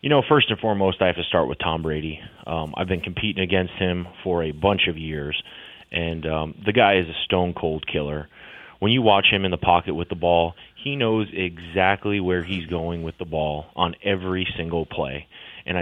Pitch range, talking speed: 85-100 Hz, 210 wpm